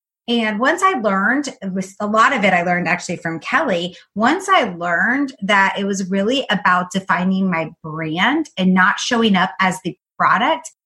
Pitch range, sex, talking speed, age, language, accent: 185-245 Hz, female, 170 wpm, 30-49, English, American